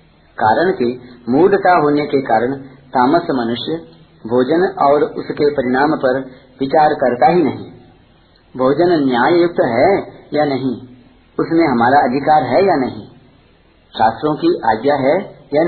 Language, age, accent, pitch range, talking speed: Hindi, 50-69, native, 125-165 Hz, 130 wpm